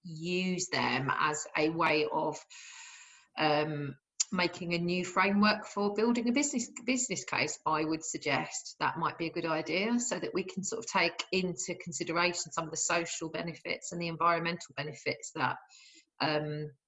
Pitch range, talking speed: 160-200 Hz, 165 wpm